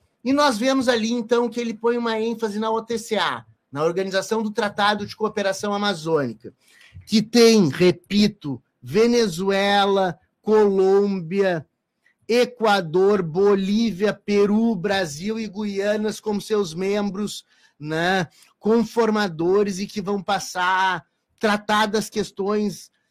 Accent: Brazilian